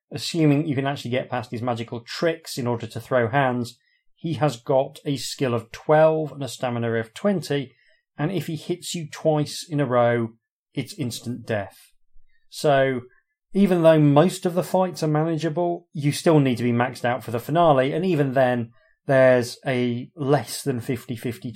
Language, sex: English, male